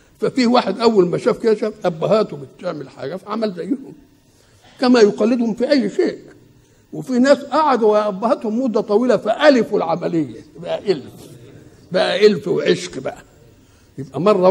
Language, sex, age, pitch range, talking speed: Arabic, male, 60-79, 135-205 Hz, 130 wpm